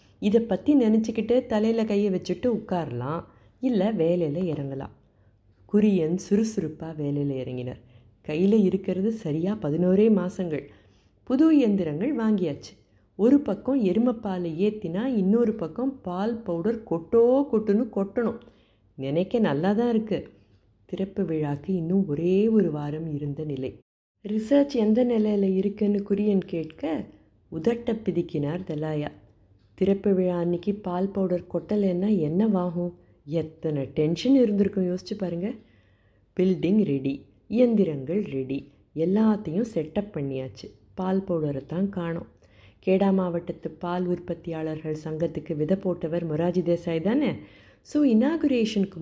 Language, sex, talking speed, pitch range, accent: Tamil, female, 110 wpm, 150-210 Hz, native